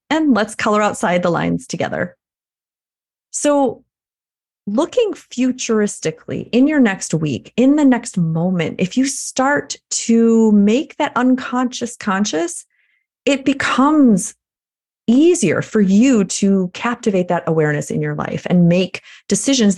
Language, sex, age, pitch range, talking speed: English, female, 30-49, 190-245 Hz, 125 wpm